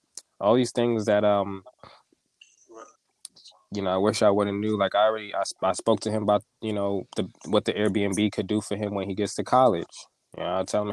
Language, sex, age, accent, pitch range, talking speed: English, male, 20-39, American, 100-115 Hz, 230 wpm